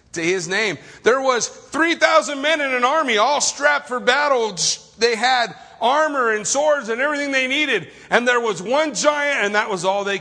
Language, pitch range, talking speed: English, 180-255 Hz, 195 wpm